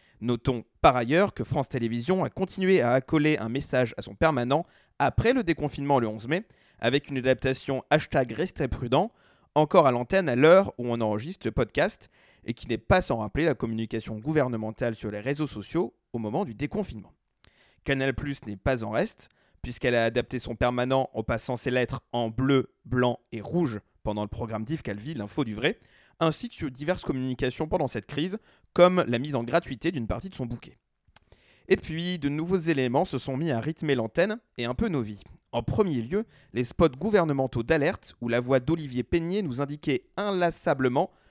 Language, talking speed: French, 195 wpm